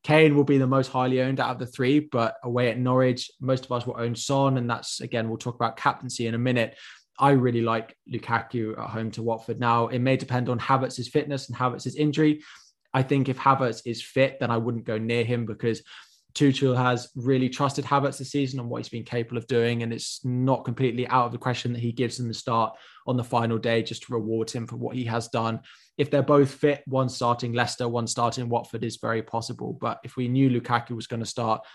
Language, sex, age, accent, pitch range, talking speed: English, male, 20-39, British, 115-130 Hz, 235 wpm